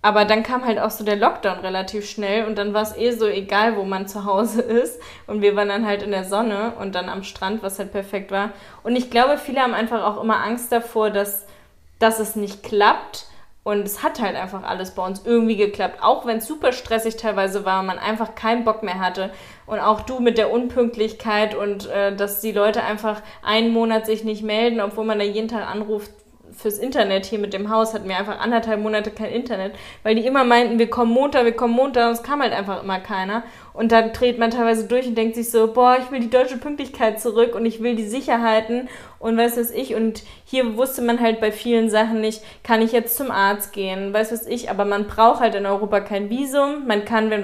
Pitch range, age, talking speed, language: 205-235 Hz, 20-39, 235 wpm, German